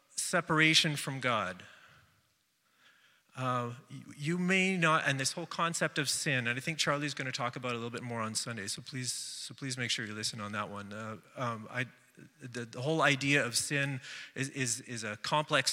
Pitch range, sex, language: 125-150 Hz, male, English